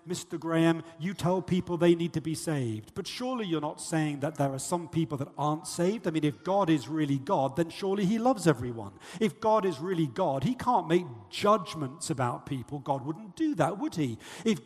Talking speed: 215 wpm